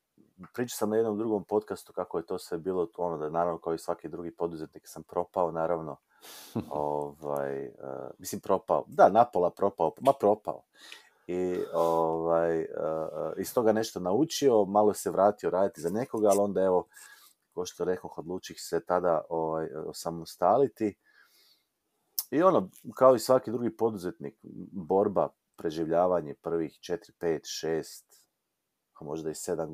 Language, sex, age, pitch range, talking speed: Croatian, male, 40-59, 80-100 Hz, 145 wpm